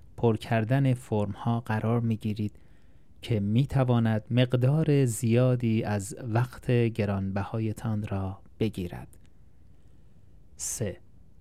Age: 30-49